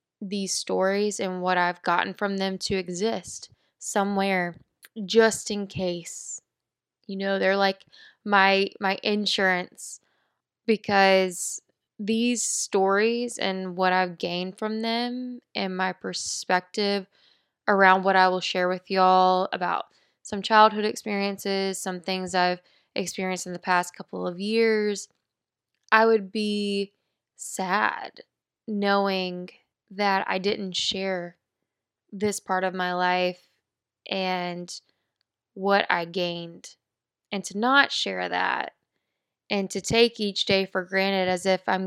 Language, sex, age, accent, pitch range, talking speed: English, female, 10-29, American, 180-205 Hz, 125 wpm